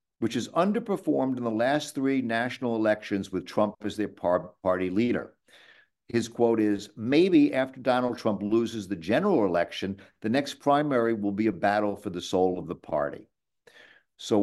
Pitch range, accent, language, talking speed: 105-145 Hz, American, English, 165 wpm